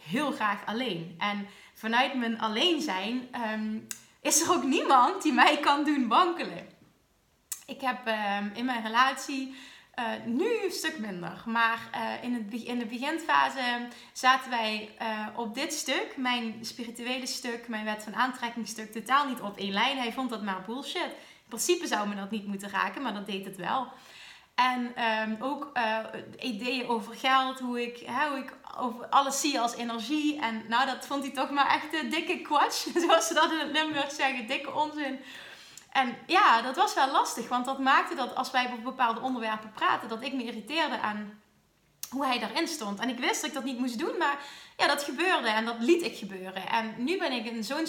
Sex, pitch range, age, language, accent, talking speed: female, 230-285 Hz, 20-39, Dutch, Dutch, 185 wpm